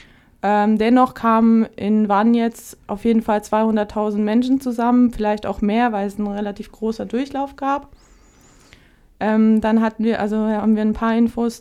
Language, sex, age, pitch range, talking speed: German, female, 20-39, 210-235 Hz, 165 wpm